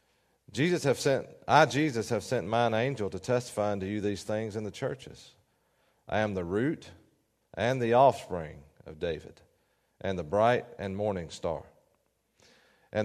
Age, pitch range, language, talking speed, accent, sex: 40-59, 95-120 Hz, English, 155 wpm, American, male